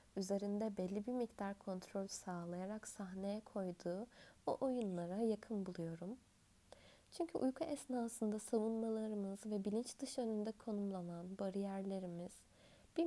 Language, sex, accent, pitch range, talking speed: Turkish, female, native, 185-230 Hz, 105 wpm